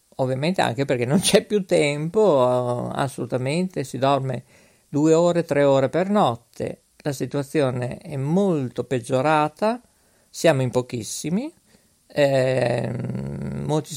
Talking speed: 110 wpm